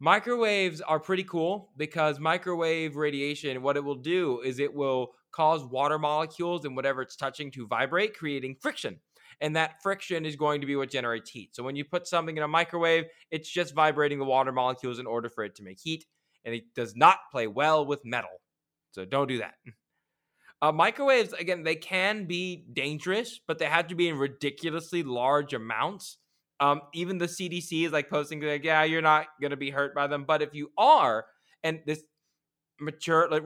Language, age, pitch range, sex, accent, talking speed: English, 20-39, 140-170 Hz, male, American, 195 wpm